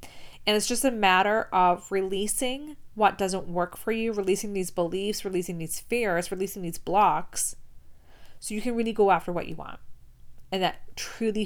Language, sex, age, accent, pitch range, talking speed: English, female, 20-39, American, 175-205 Hz, 175 wpm